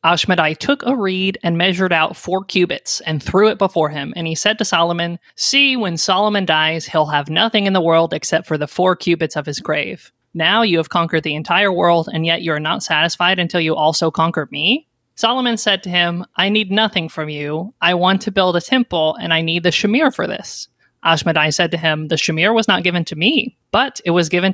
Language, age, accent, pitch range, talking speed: English, 20-39, American, 165-205 Hz, 225 wpm